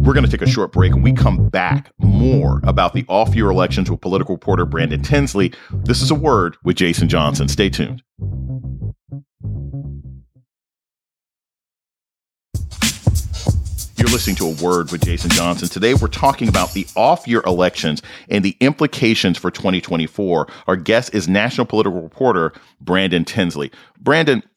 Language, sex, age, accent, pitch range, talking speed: English, male, 40-59, American, 90-125 Hz, 145 wpm